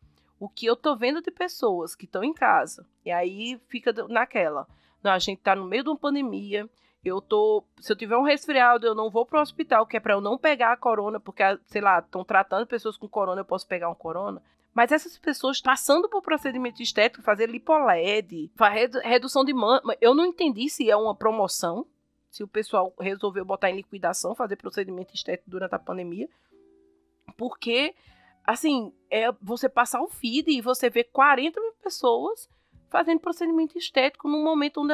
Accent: Brazilian